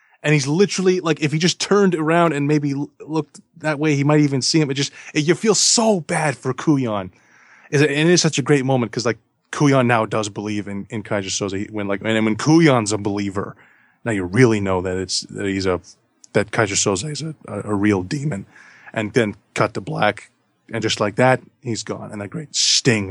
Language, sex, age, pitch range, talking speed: English, male, 20-39, 110-140 Hz, 215 wpm